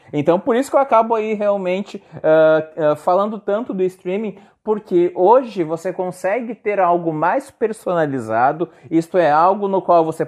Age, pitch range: 30-49, 150-195 Hz